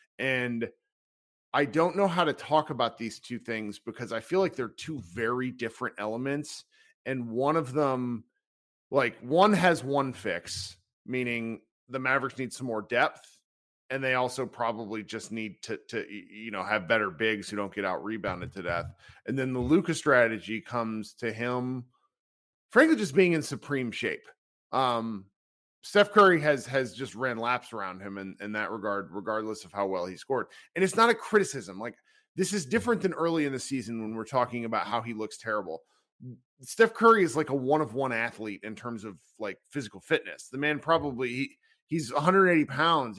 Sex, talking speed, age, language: male, 185 wpm, 40-59, English